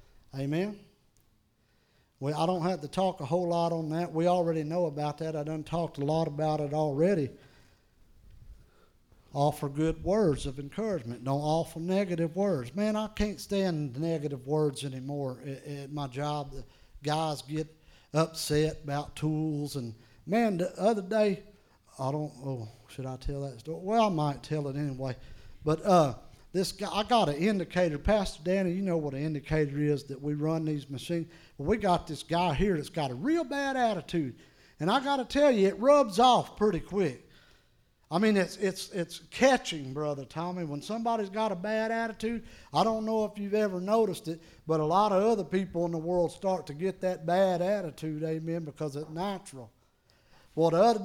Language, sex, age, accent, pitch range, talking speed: English, male, 50-69, American, 145-200 Hz, 185 wpm